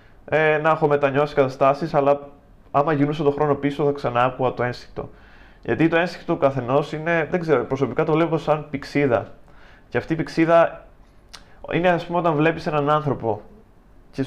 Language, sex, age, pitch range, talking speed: Greek, male, 20-39, 120-150 Hz, 175 wpm